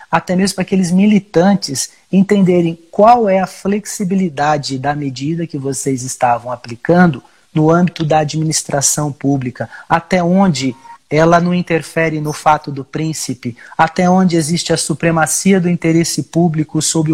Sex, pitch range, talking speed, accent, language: male, 150-185 Hz, 135 wpm, Brazilian, Portuguese